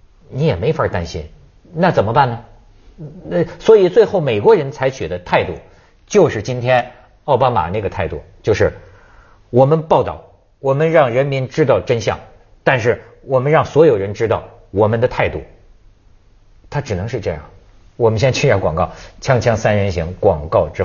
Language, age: Chinese, 50-69